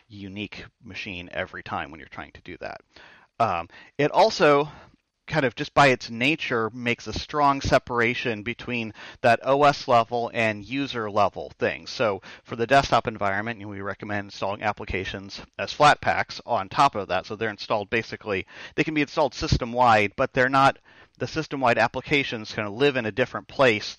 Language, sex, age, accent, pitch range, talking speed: English, male, 40-59, American, 110-130 Hz, 175 wpm